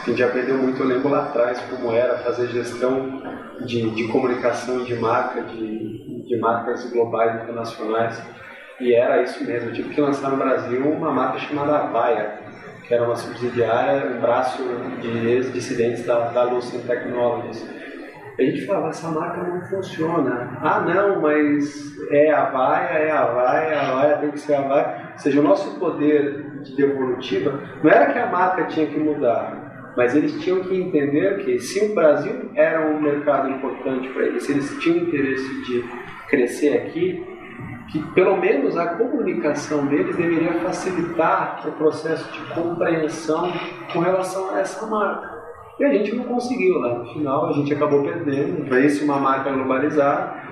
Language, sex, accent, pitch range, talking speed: Portuguese, male, Brazilian, 125-160 Hz, 170 wpm